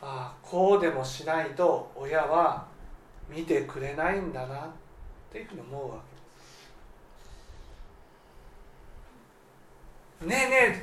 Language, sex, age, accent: Japanese, male, 40-59, native